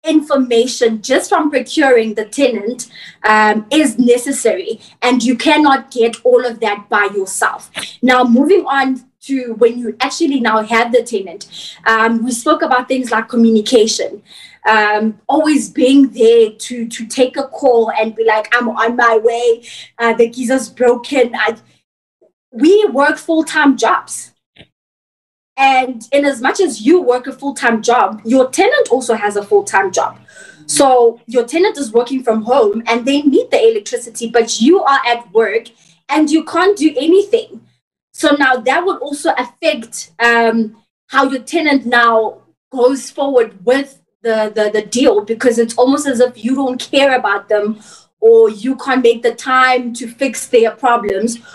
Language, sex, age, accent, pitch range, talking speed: English, female, 20-39, South African, 230-275 Hz, 160 wpm